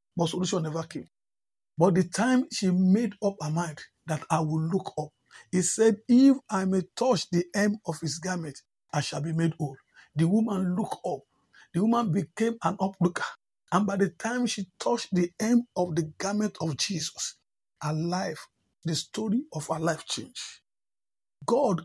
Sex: male